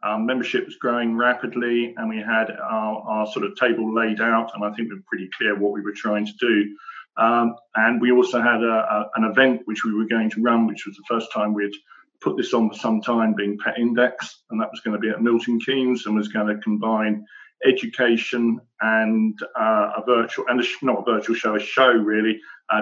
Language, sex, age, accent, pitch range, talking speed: English, male, 40-59, British, 110-125 Hz, 230 wpm